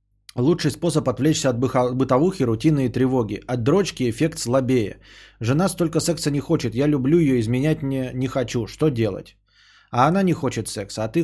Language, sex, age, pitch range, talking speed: Bulgarian, male, 20-39, 110-150 Hz, 175 wpm